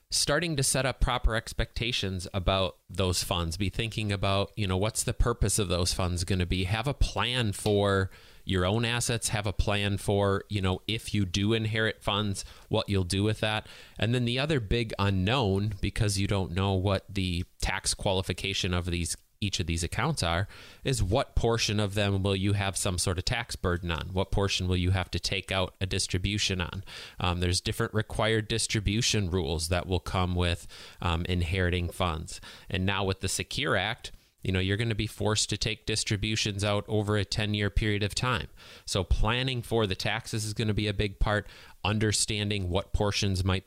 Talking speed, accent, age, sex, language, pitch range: 200 wpm, American, 30-49, male, English, 95-110 Hz